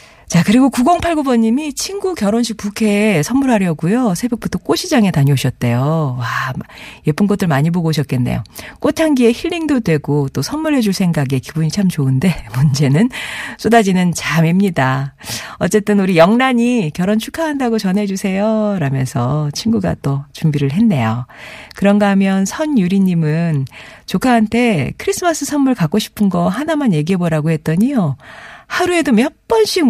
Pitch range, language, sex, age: 150-230 Hz, Korean, female, 40-59